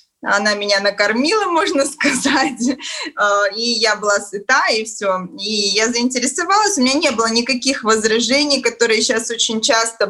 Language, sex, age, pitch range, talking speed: Russian, female, 20-39, 205-255 Hz, 145 wpm